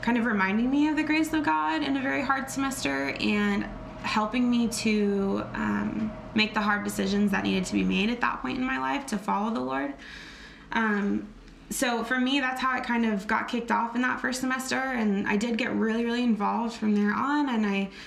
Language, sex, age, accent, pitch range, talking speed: English, female, 20-39, American, 195-240 Hz, 220 wpm